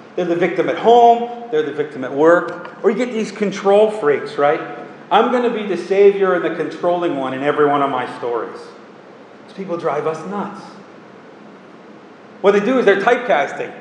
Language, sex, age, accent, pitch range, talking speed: English, male, 40-59, American, 165-220 Hz, 190 wpm